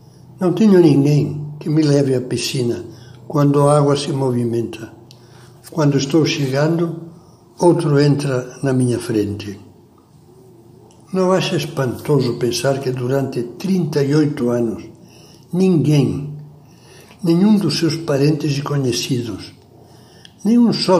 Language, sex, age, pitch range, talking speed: Portuguese, male, 60-79, 130-165 Hz, 110 wpm